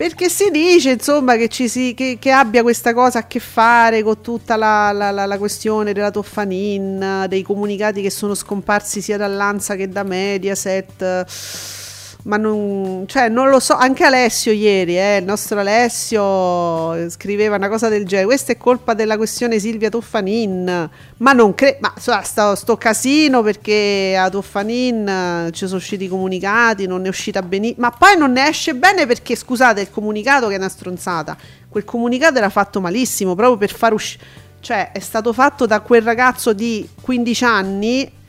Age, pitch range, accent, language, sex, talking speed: 40-59, 195-240 Hz, native, Italian, female, 175 wpm